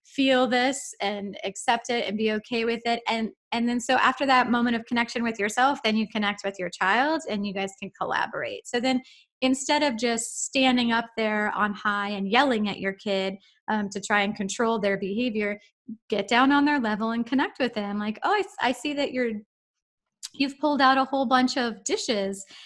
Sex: female